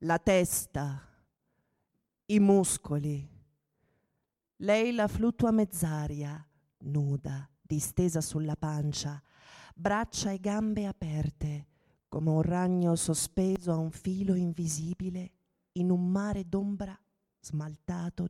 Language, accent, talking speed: Italian, native, 95 wpm